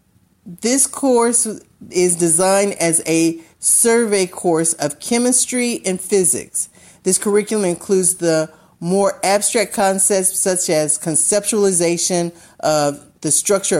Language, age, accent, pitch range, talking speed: English, 50-69, American, 155-195 Hz, 110 wpm